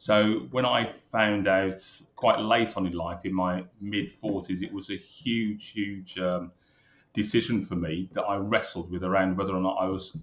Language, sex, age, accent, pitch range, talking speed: English, male, 30-49, British, 95-105 Hz, 190 wpm